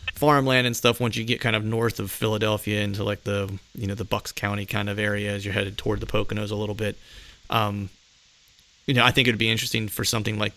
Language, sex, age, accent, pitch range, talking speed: English, male, 30-49, American, 105-115 Hz, 245 wpm